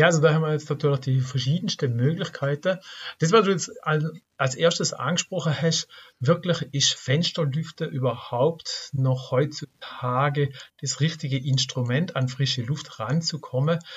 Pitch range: 135-165 Hz